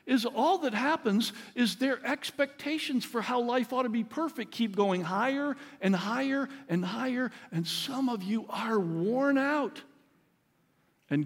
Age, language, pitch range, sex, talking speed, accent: 60-79, English, 190-255 Hz, male, 155 wpm, American